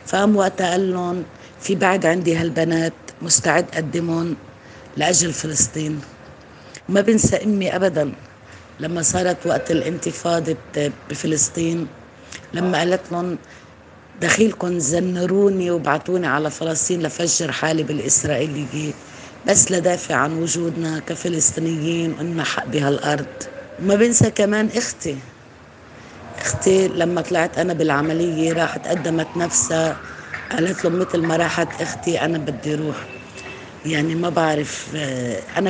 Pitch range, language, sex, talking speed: 150-175 Hz, Arabic, female, 110 wpm